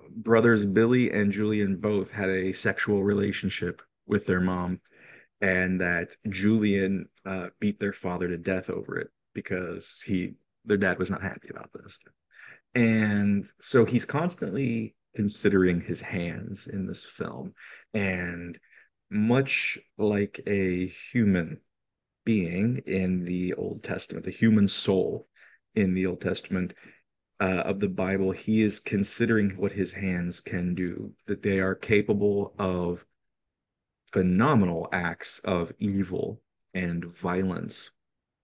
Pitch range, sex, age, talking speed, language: 90-105 Hz, male, 30-49, 130 wpm, English